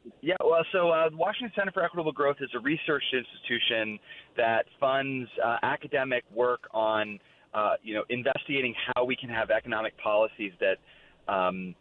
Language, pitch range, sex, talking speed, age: English, 105-140 Hz, male, 165 wpm, 30-49